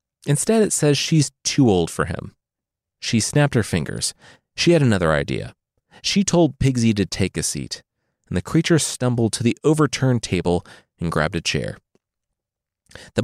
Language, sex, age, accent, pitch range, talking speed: English, male, 30-49, American, 90-145 Hz, 165 wpm